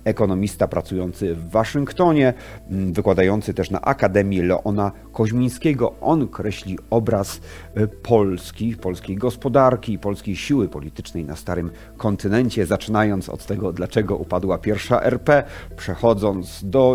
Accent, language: native, Polish